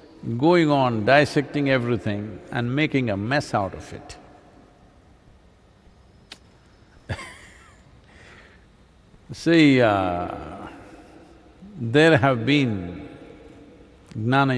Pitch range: 105-155 Hz